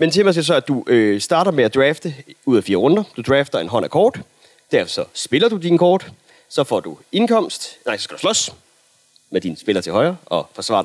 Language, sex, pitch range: Danish, male, 125-190 Hz